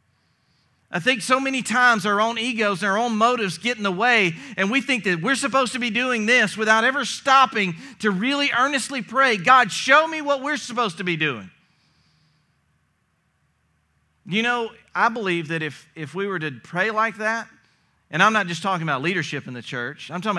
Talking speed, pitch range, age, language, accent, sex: 195 wpm, 130-210 Hz, 40-59, English, American, male